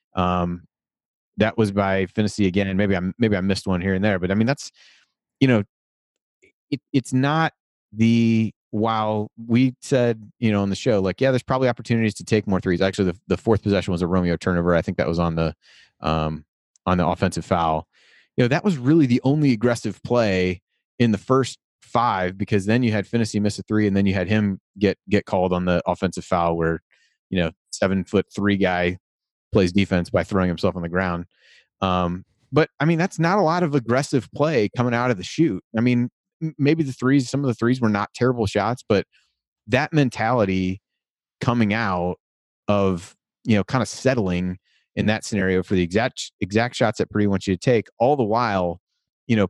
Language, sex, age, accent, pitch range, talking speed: English, male, 30-49, American, 95-120 Hz, 205 wpm